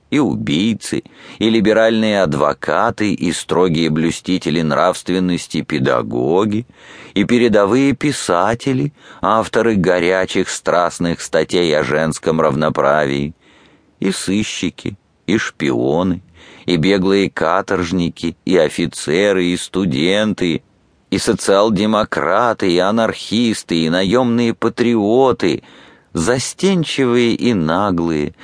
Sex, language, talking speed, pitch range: male, English, 85 wpm, 80-110 Hz